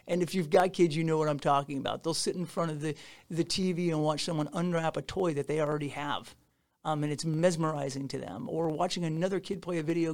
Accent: American